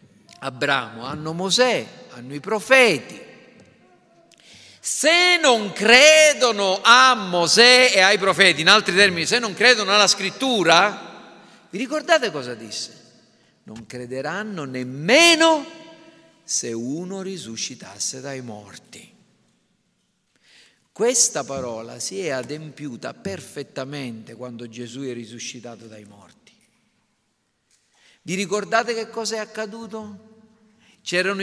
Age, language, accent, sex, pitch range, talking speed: 50-69, Italian, native, male, 140-230 Hz, 100 wpm